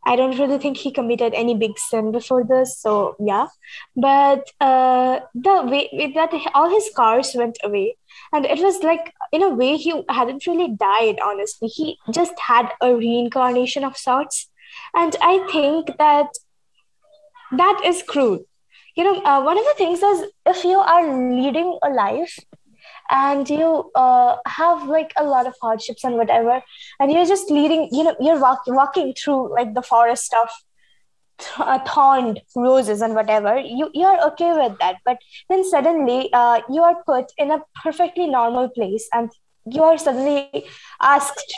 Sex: female